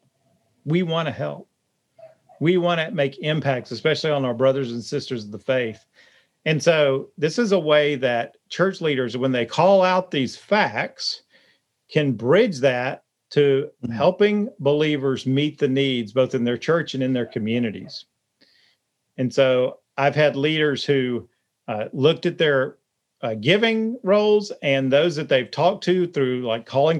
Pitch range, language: 135-165 Hz, English